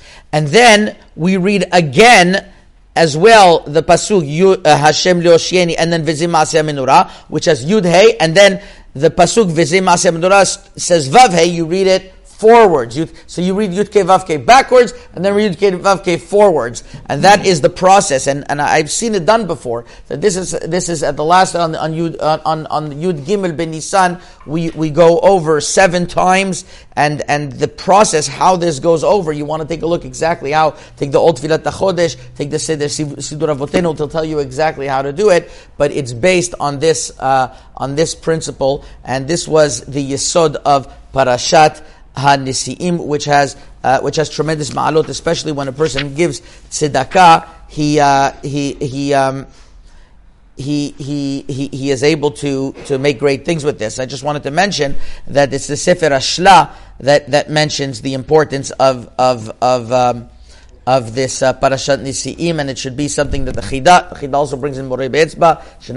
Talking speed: 185 wpm